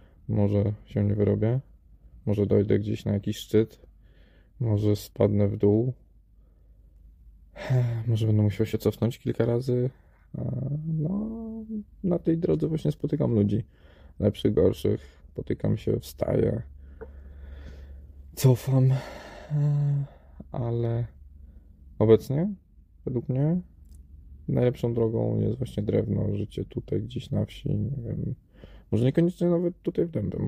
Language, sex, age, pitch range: Polish, male, 20-39, 100-120 Hz